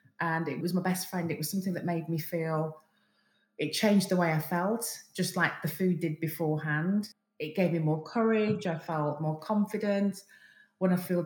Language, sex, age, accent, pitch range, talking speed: English, female, 30-49, British, 155-195 Hz, 195 wpm